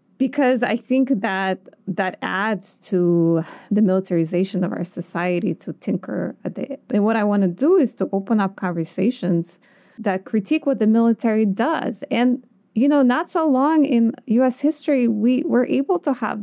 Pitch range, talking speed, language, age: 185-240 Hz, 170 wpm, English, 30-49